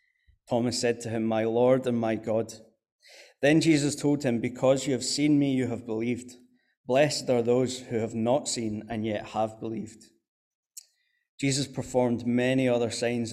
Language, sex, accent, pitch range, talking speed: English, male, British, 110-130 Hz, 165 wpm